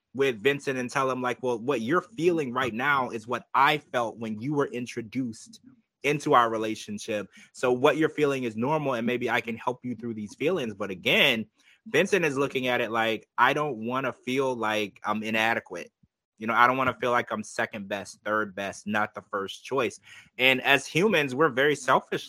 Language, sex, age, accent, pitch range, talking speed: English, male, 20-39, American, 115-140 Hz, 205 wpm